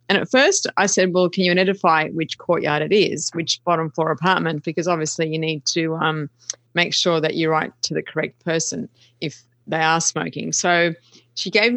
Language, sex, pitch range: English, female, 150-180 Hz